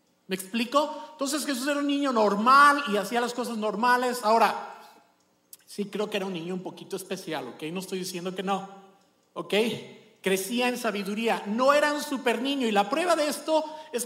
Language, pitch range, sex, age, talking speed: Spanish, 195-275 Hz, male, 50-69, 190 wpm